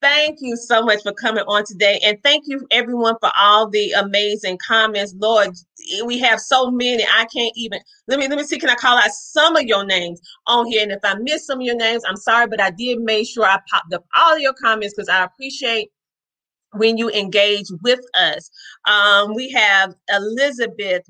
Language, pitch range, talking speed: English, 205-255 Hz, 210 wpm